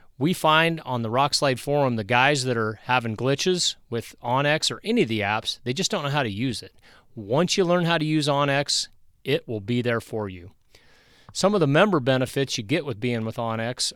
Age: 30-49